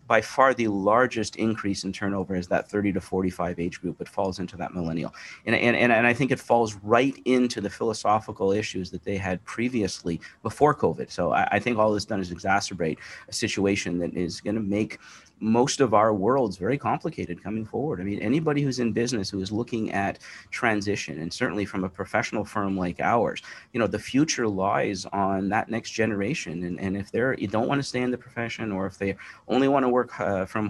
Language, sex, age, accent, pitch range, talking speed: English, male, 40-59, American, 95-120 Hz, 215 wpm